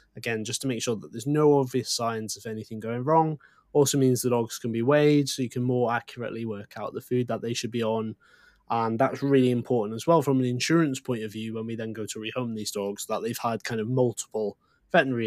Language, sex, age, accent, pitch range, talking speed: English, male, 20-39, British, 110-145 Hz, 245 wpm